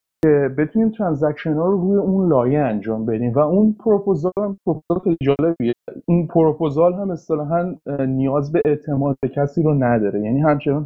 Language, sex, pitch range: Persian, male, 140-175 Hz